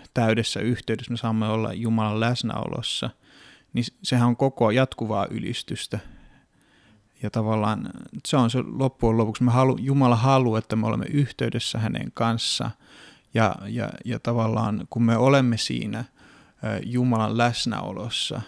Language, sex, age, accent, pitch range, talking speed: Finnish, male, 30-49, native, 110-125 Hz, 130 wpm